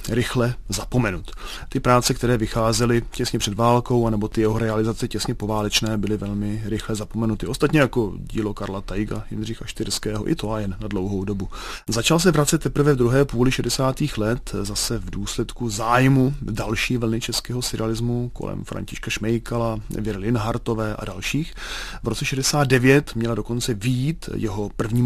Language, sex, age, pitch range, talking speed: Czech, male, 30-49, 110-125 Hz, 155 wpm